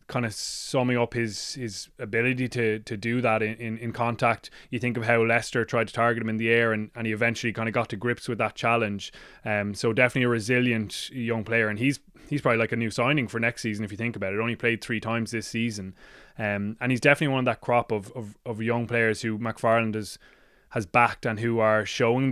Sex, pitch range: male, 110-120 Hz